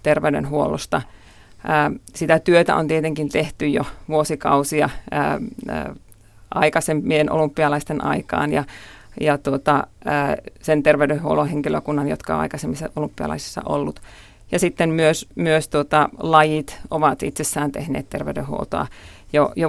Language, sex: Finnish, female